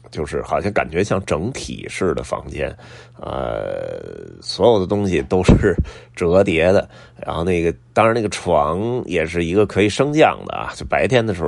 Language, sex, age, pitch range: Chinese, male, 30-49, 80-105 Hz